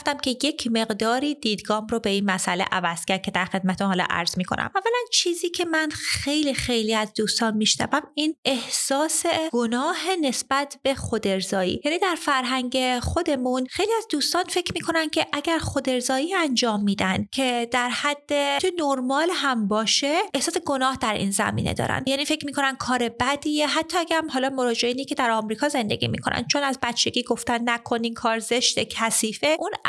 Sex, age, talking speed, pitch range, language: female, 30-49, 160 wpm, 220-290 Hz, Persian